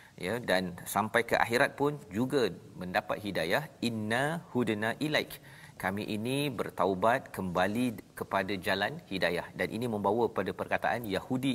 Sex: male